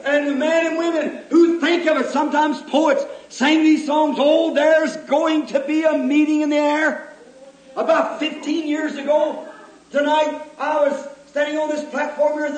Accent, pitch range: American, 280-305 Hz